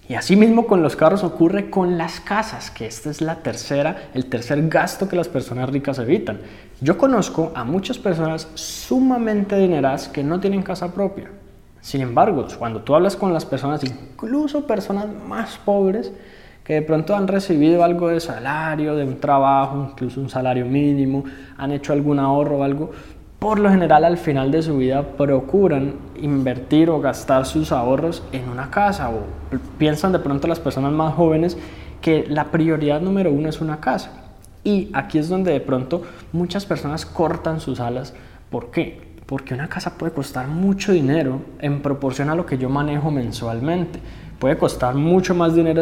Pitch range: 135-180 Hz